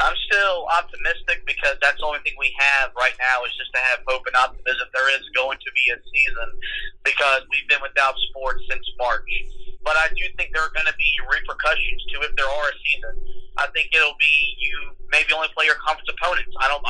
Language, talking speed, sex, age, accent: English, 220 wpm, male, 30-49, American